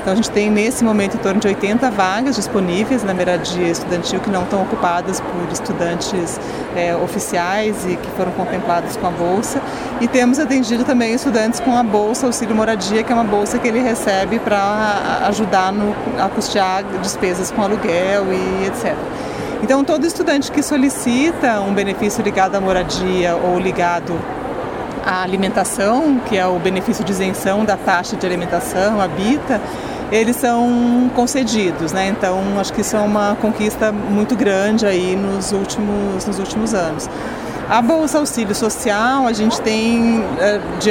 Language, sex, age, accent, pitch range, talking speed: Portuguese, female, 30-49, Brazilian, 190-235 Hz, 160 wpm